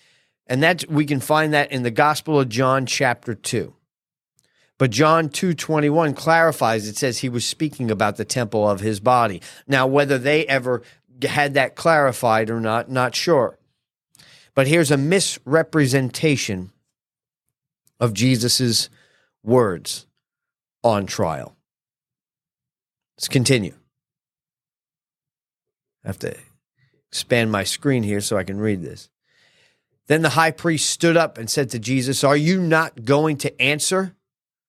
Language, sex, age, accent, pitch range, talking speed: English, male, 40-59, American, 120-150 Hz, 135 wpm